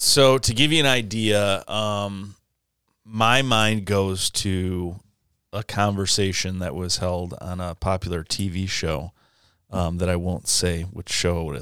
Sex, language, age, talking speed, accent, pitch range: male, English, 30-49, 145 wpm, American, 90-110 Hz